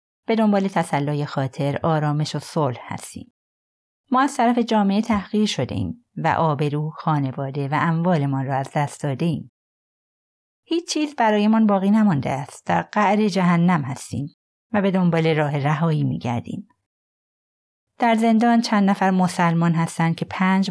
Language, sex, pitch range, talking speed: Persian, female, 145-195 Hz, 140 wpm